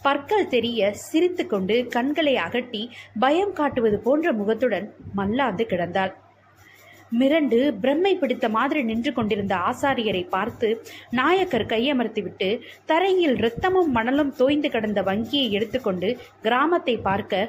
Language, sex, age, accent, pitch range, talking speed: Tamil, female, 20-39, native, 230-305 Hz, 75 wpm